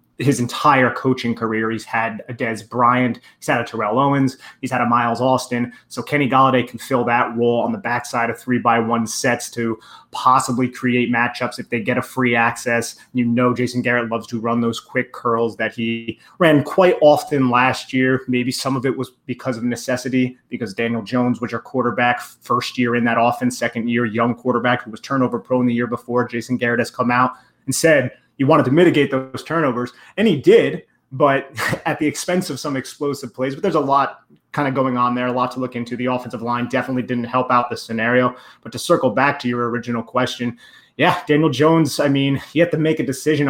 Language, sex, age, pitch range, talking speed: English, male, 30-49, 120-140 Hz, 215 wpm